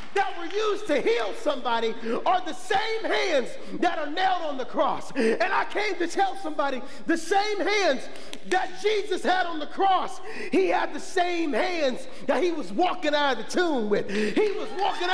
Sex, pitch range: male, 300-395 Hz